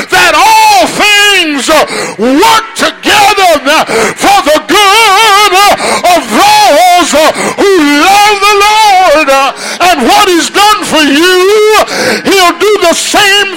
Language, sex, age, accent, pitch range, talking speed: English, male, 50-69, American, 325-410 Hz, 105 wpm